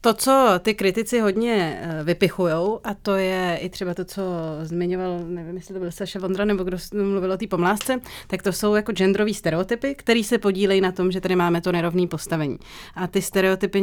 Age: 30-49